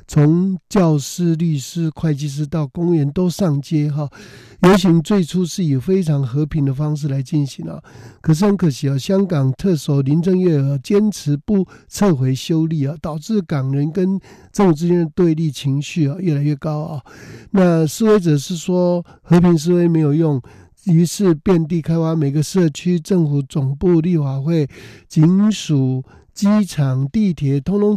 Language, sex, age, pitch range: Chinese, male, 60-79, 145-180 Hz